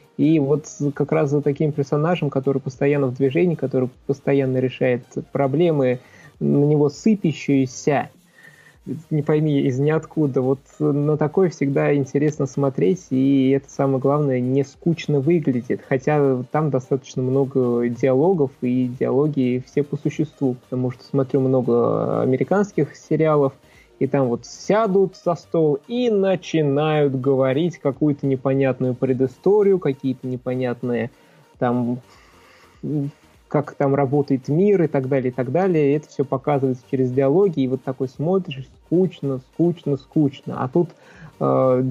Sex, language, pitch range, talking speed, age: male, Russian, 130-155 Hz, 130 wpm, 20-39